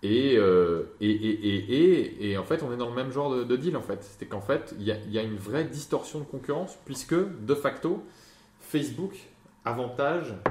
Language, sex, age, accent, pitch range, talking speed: French, male, 20-39, French, 105-160 Hz, 210 wpm